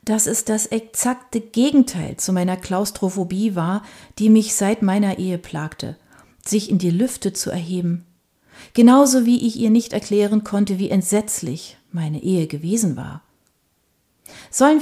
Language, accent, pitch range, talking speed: German, German, 160-220 Hz, 140 wpm